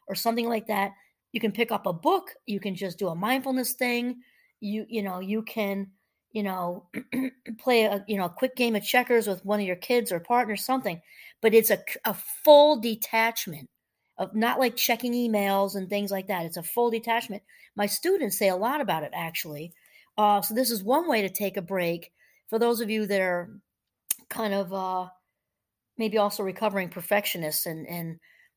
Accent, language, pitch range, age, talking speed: American, English, 185-235 Hz, 40-59, 195 wpm